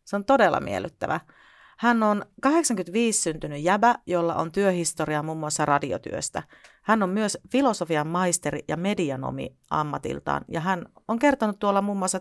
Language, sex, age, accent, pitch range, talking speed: Finnish, female, 40-59, native, 155-225 Hz, 145 wpm